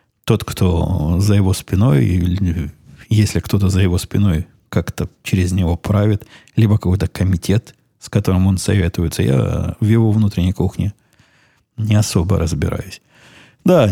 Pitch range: 95-120 Hz